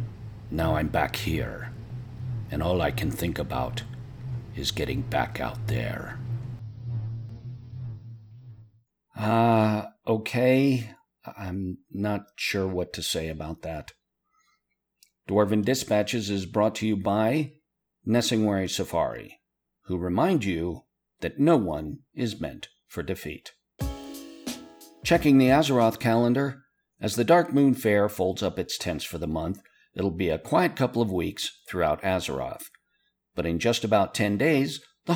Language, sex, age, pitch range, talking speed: English, male, 50-69, 95-125 Hz, 130 wpm